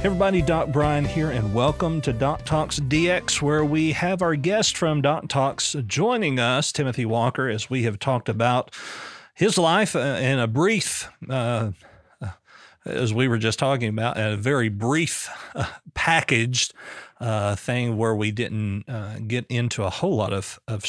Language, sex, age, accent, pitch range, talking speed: English, male, 40-59, American, 110-135 Hz, 165 wpm